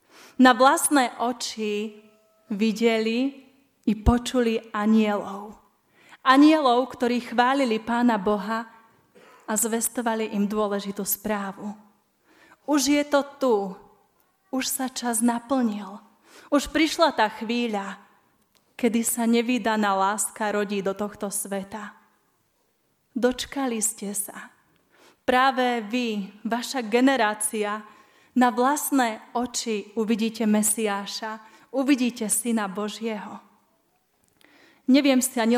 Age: 30-49